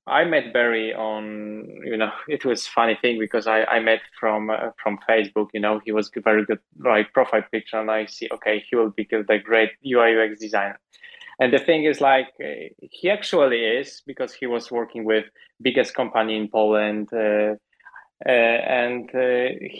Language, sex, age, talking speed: English, male, 20-39, 185 wpm